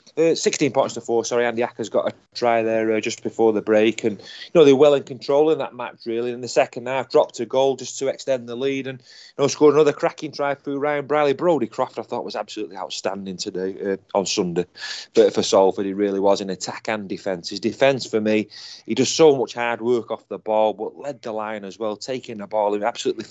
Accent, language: British, English